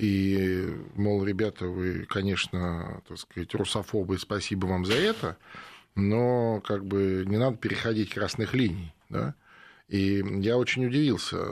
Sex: male